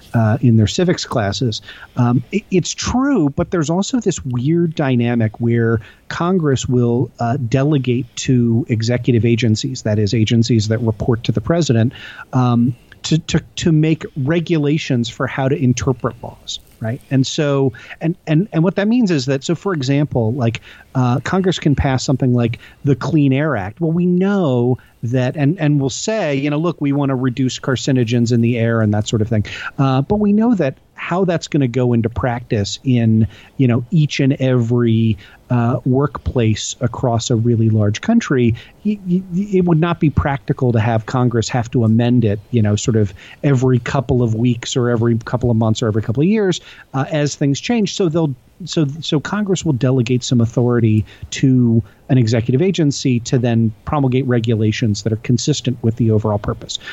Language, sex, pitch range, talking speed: English, male, 115-155 Hz, 185 wpm